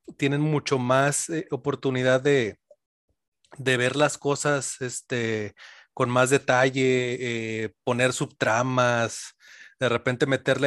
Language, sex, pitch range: Spanish, male, 120-140 Hz